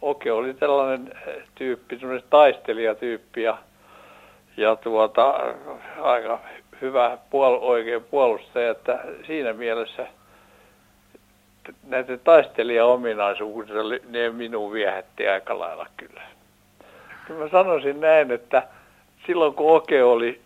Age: 60-79